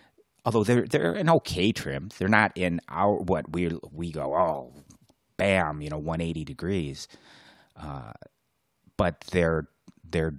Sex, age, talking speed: male, 30-49, 145 wpm